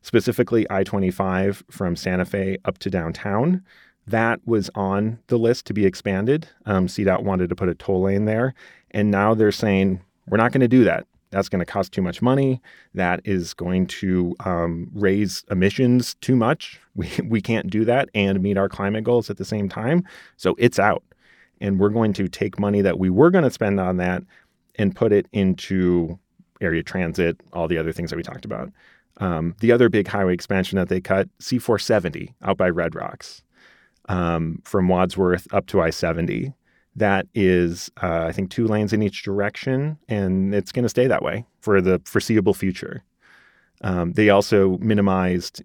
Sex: male